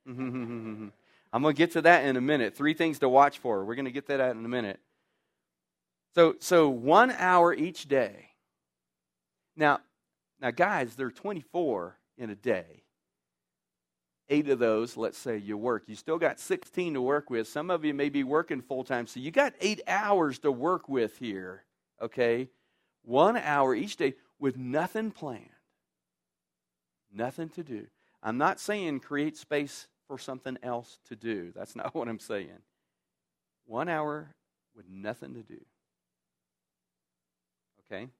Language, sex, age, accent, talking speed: English, male, 40-59, American, 160 wpm